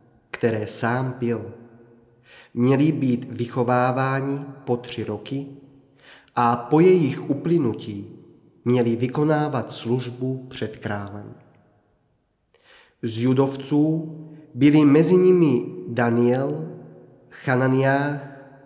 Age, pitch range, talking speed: 30-49, 125-155 Hz, 80 wpm